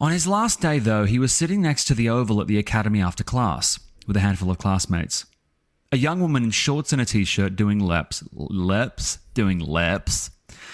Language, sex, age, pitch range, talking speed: English, male, 30-49, 95-130 Hz, 195 wpm